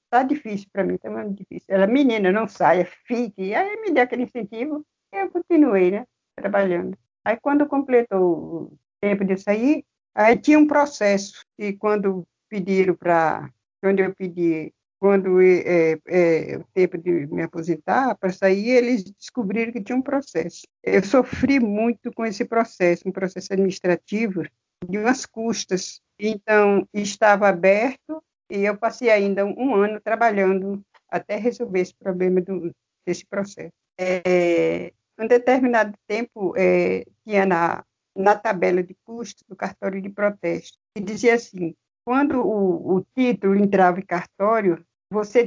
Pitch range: 185-235 Hz